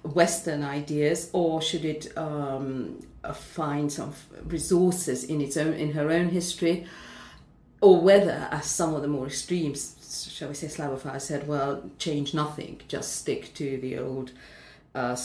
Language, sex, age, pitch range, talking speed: English, female, 50-69, 140-165 Hz, 150 wpm